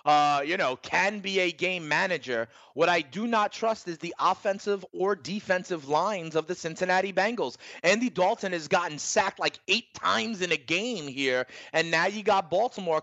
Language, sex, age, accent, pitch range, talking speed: English, male, 30-49, American, 150-195 Hz, 185 wpm